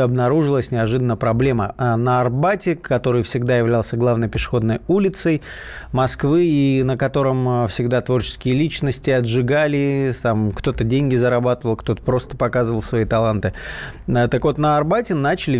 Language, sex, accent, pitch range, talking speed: Russian, male, native, 120-150 Hz, 130 wpm